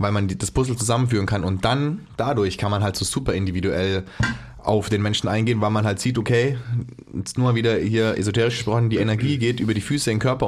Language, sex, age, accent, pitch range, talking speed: German, male, 20-39, German, 105-125 Hz, 230 wpm